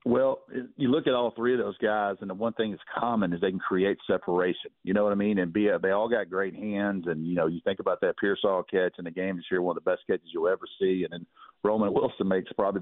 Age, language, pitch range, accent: 50-69, English, 100-120 Hz, American